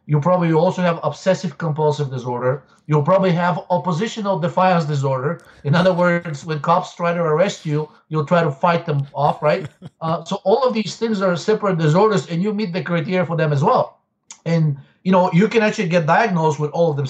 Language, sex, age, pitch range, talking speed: English, male, 50-69, 150-180 Hz, 205 wpm